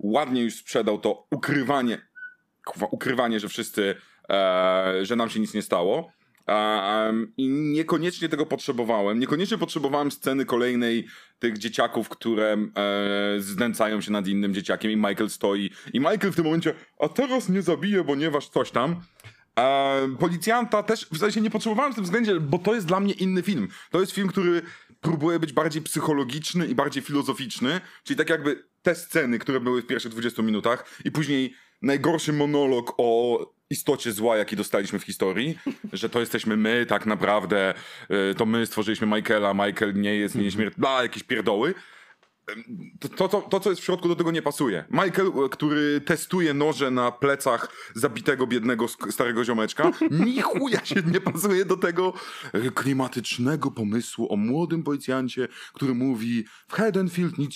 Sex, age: male, 30-49